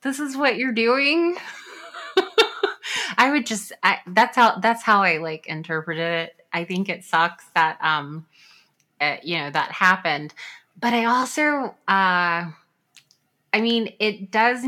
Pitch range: 160-215 Hz